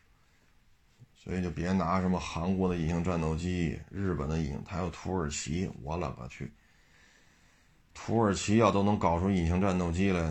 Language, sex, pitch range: Chinese, male, 85-100 Hz